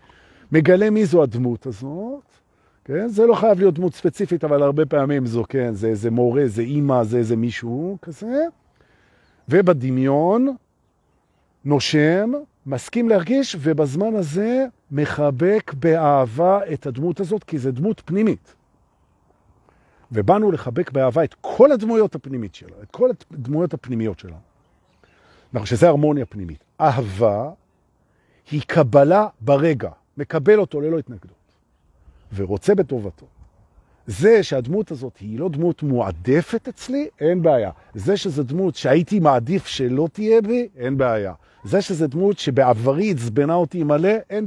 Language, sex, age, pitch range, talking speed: Hebrew, male, 50-69, 115-190 Hz, 130 wpm